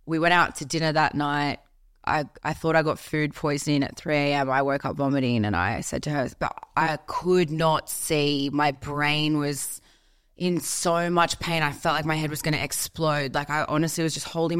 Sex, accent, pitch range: female, Australian, 145-160 Hz